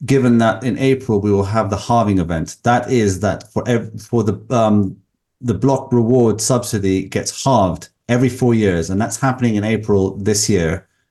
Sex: male